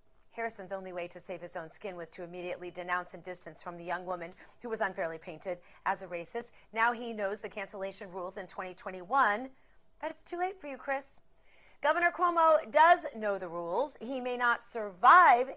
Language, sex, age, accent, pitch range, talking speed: English, female, 40-59, American, 185-275 Hz, 195 wpm